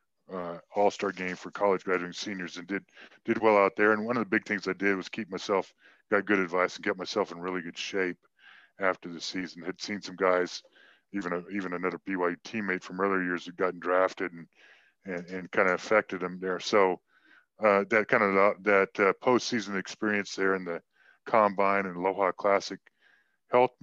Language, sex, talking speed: English, female, 200 wpm